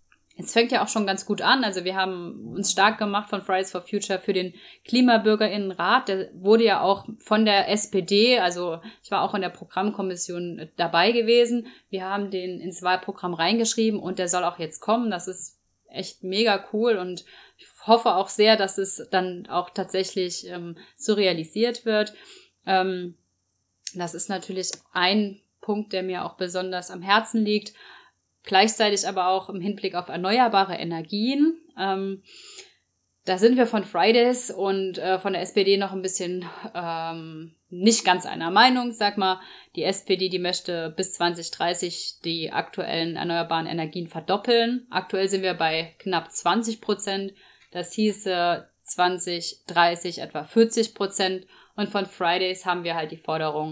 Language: German